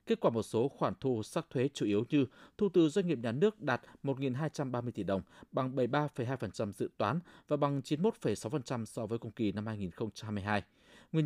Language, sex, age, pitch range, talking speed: Vietnamese, male, 20-39, 115-155 Hz, 185 wpm